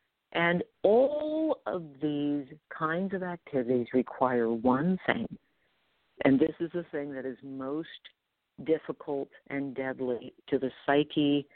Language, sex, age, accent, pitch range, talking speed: English, female, 50-69, American, 130-170 Hz, 125 wpm